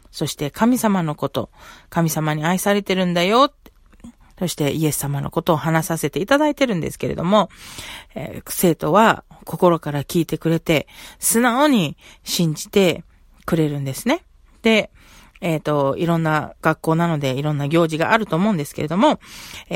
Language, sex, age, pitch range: Japanese, female, 40-59, 155-195 Hz